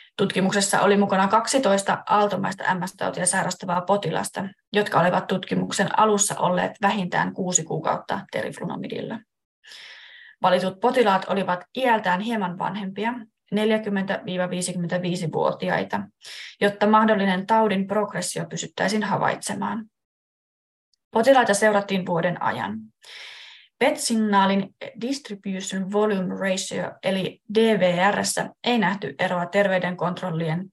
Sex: female